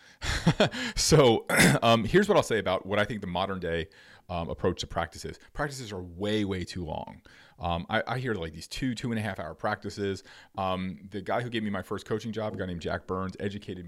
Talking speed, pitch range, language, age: 230 wpm, 90-110 Hz, English, 40-59